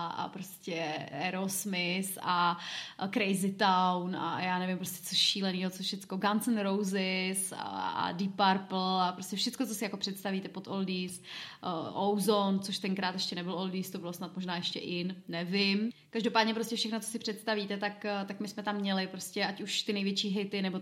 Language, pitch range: Czech, 190-225 Hz